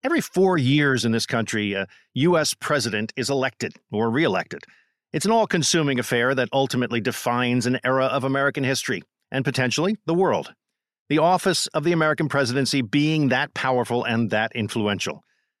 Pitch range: 125-160 Hz